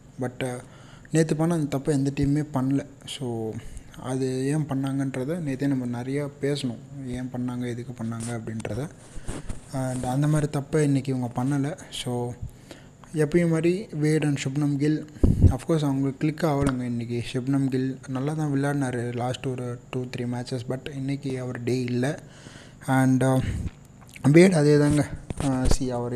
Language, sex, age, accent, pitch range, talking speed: Tamil, male, 30-49, native, 125-140 Hz, 140 wpm